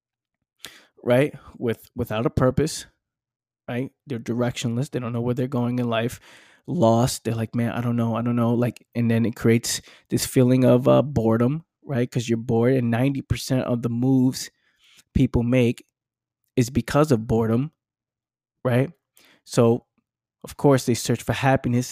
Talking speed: 160 wpm